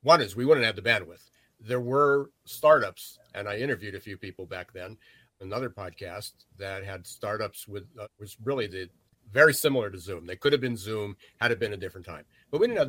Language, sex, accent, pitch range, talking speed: English, male, American, 95-125 Hz, 215 wpm